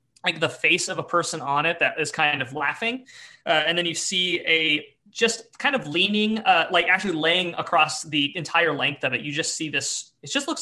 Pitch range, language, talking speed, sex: 145-175 Hz, English, 225 wpm, male